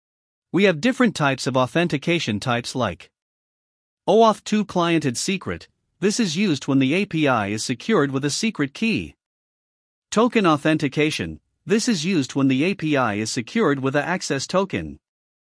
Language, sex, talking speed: English, male, 150 wpm